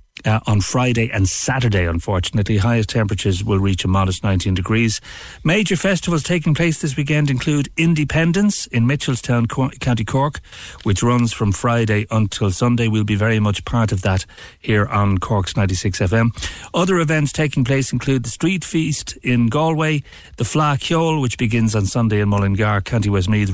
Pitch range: 100-135 Hz